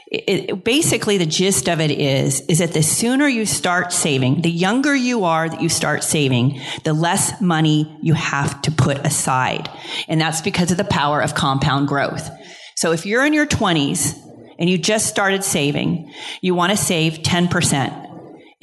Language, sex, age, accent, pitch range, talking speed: English, female, 40-59, American, 150-195 Hz, 175 wpm